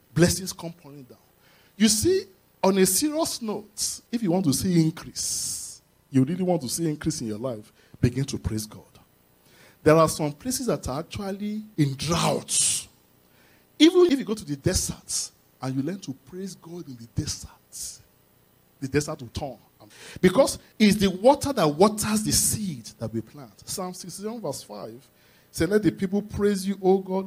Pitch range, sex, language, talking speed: 135-215 Hz, male, English, 180 wpm